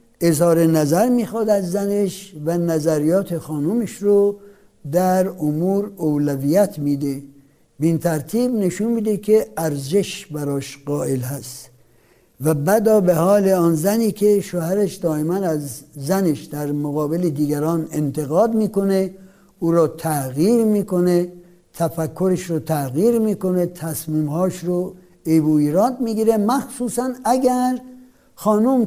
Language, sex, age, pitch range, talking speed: Persian, male, 60-79, 150-205 Hz, 110 wpm